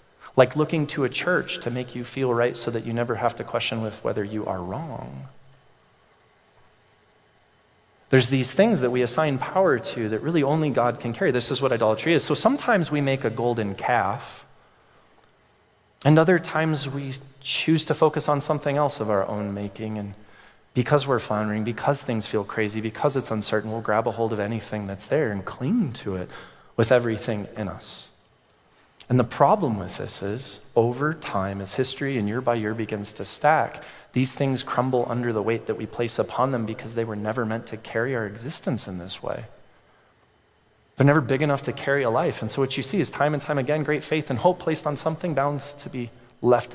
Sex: male